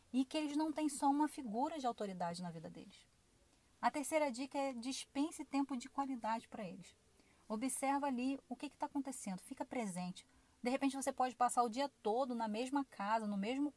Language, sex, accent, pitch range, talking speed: Portuguese, female, Brazilian, 210-275 Hz, 190 wpm